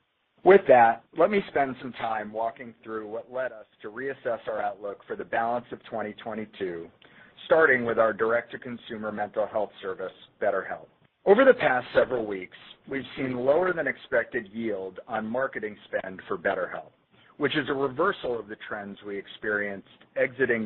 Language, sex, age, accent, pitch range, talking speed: English, male, 40-59, American, 105-145 Hz, 155 wpm